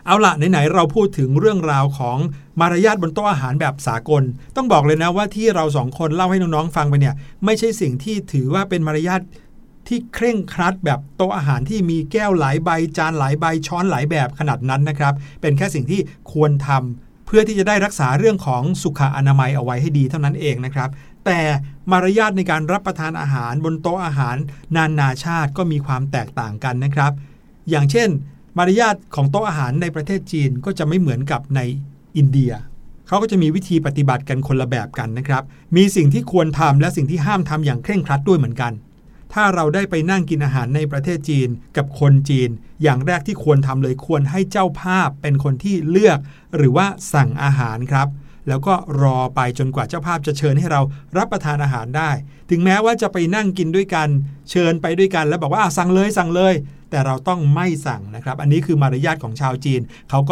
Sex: male